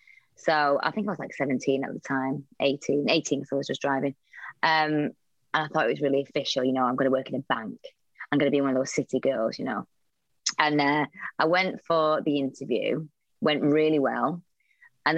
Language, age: English, 20-39